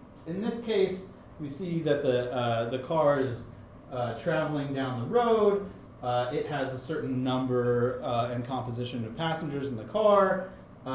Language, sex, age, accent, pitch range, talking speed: English, male, 30-49, American, 115-155 Hz, 170 wpm